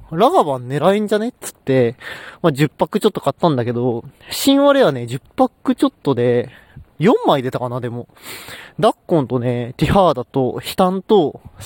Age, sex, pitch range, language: 20-39, male, 125-215 Hz, Japanese